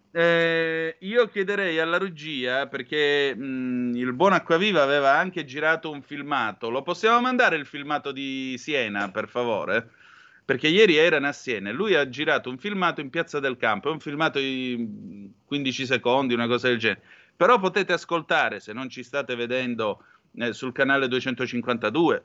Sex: male